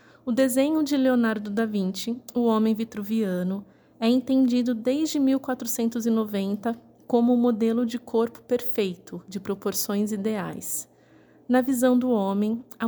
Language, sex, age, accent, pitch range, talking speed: Portuguese, female, 20-39, Brazilian, 220-255 Hz, 125 wpm